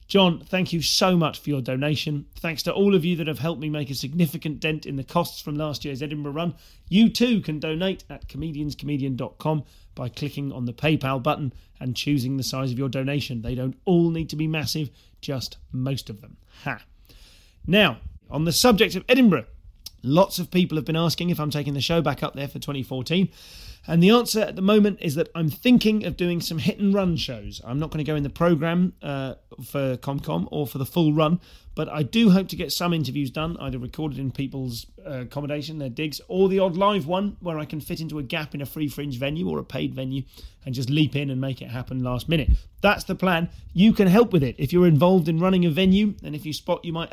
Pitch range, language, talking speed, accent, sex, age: 135-175 Hz, English, 235 wpm, British, male, 30-49